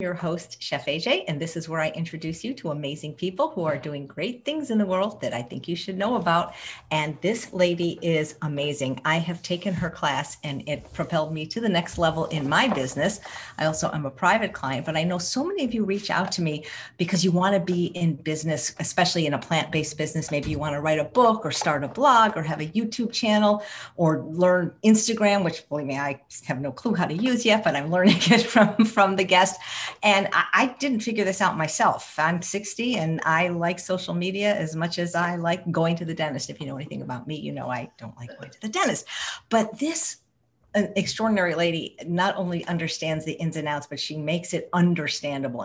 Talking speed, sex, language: 225 wpm, female, English